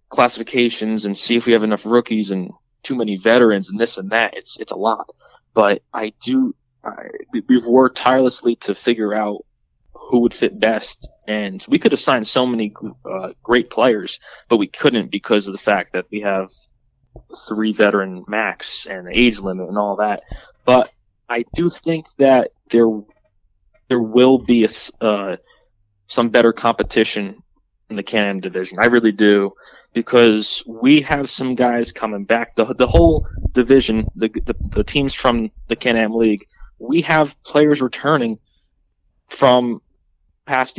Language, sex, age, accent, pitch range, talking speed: English, male, 20-39, American, 100-125 Hz, 160 wpm